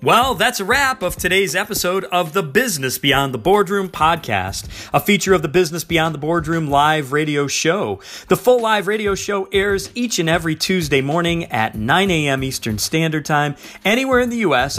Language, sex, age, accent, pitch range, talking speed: English, male, 40-59, American, 130-185 Hz, 185 wpm